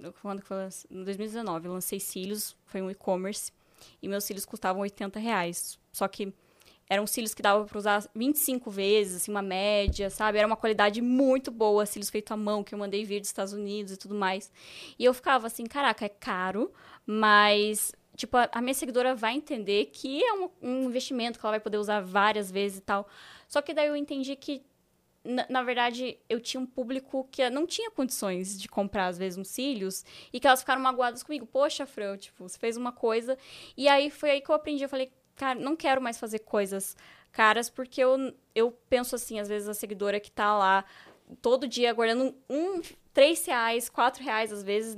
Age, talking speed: 10-29, 205 wpm